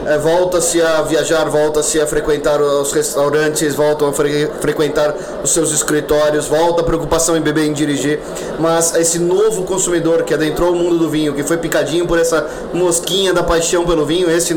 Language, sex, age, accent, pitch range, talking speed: Portuguese, male, 20-39, Brazilian, 155-180 Hz, 185 wpm